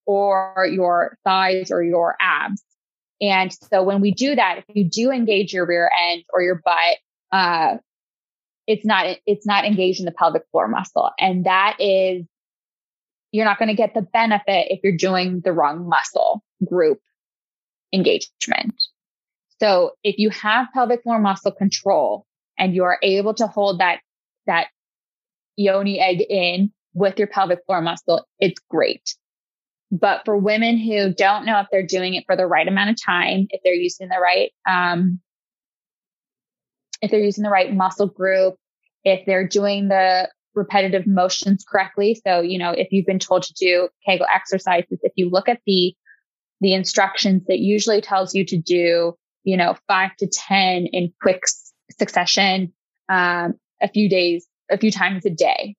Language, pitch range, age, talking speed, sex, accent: English, 185-205 Hz, 20-39, 165 wpm, female, American